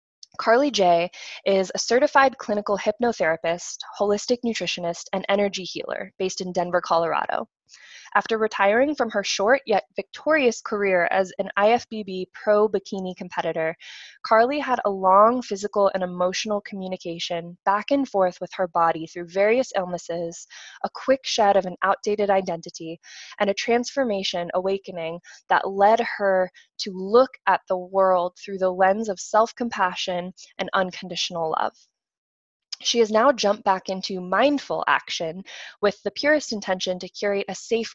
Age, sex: 20-39, female